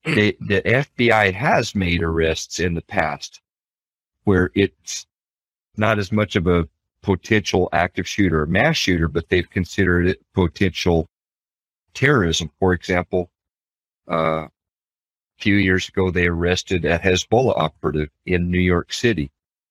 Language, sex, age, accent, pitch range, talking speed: English, male, 50-69, American, 85-100 Hz, 130 wpm